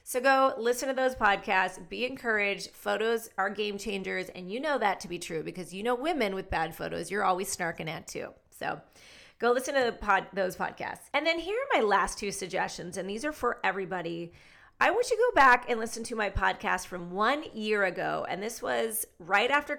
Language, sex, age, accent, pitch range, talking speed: English, female, 30-49, American, 190-265 Hz, 210 wpm